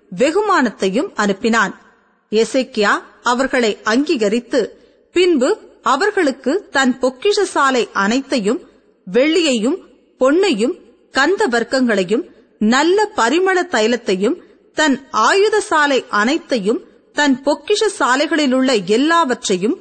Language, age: Tamil, 30-49